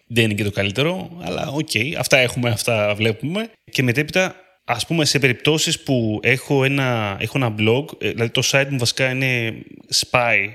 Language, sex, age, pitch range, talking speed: Greek, male, 20-39, 110-145 Hz, 170 wpm